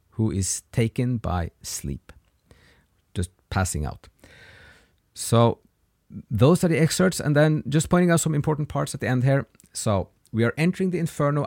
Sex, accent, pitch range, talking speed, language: male, Norwegian, 95-130 Hz, 160 wpm, English